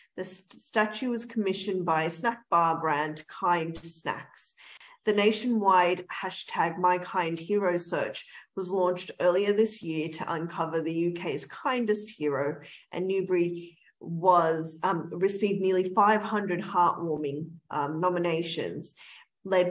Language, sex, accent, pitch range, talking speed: English, female, Australian, 165-200 Hz, 115 wpm